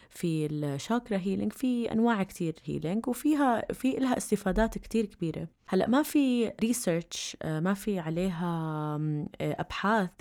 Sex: female